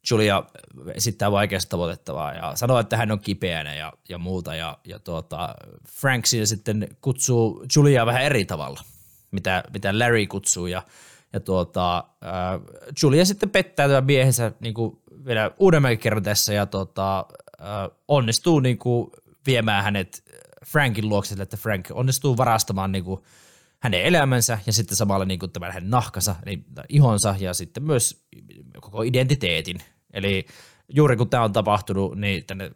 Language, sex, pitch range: Finnish, male, 95-125 Hz